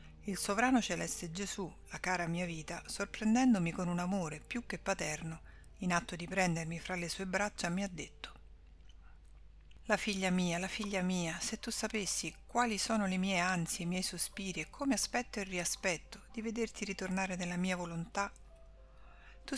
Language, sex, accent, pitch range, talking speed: Italian, female, native, 170-205 Hz, 170 wpm